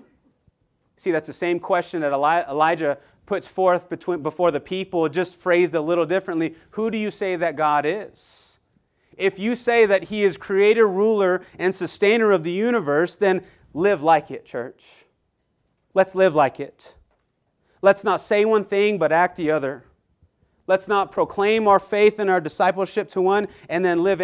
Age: 30-49